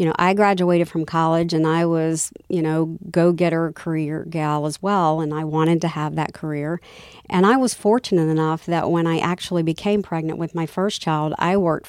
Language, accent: English, American